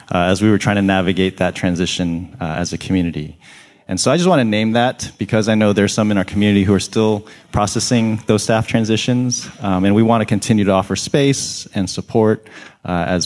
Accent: American